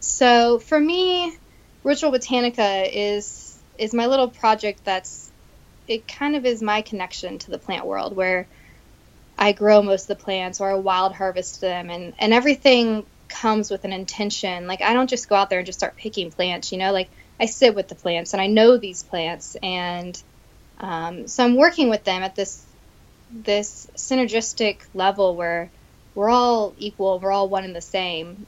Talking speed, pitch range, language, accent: 185 wpm, 190-230 Hz, English, American